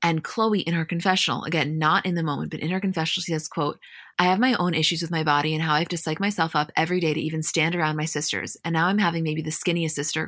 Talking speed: 280 wpm